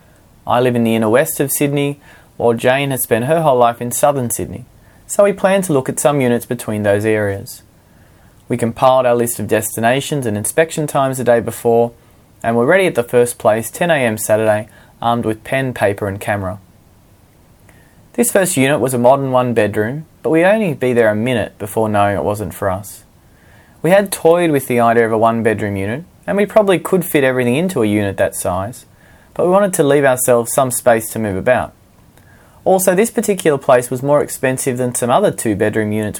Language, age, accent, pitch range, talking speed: English, 20-39, Australian, 105-145 Hz, 200 wpm